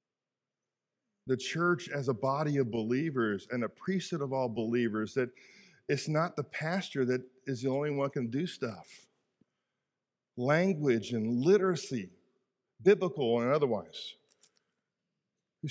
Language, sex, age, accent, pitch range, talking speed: English, male, 50-69, American, 130-190 Hz, 130 wpm